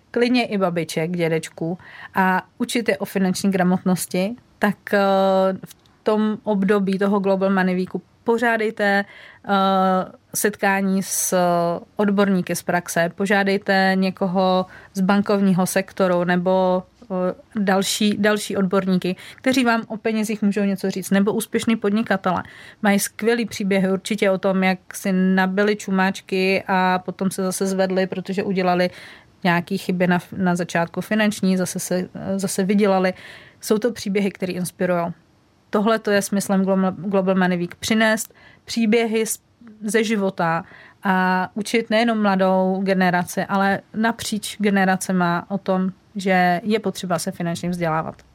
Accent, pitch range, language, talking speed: native, 185-205 Hz, Czech, 130 wpm